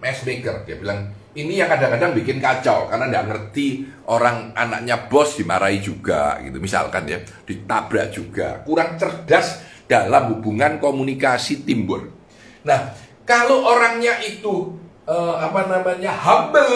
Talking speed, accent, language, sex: 125 wpm, native, Indonesian, male